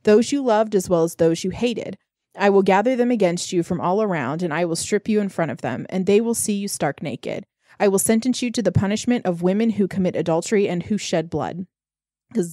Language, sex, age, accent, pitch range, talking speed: English, female, 20-39, American, 175-215 Hz, 245 wpm